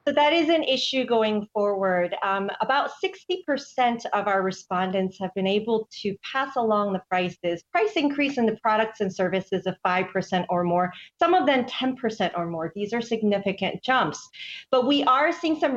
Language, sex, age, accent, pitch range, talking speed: English, female, 40-59, American, 190-255 Hz, 180 wpm